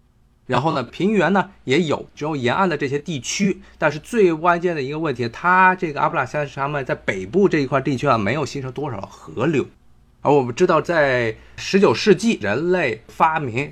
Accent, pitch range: native, 115-175 Hz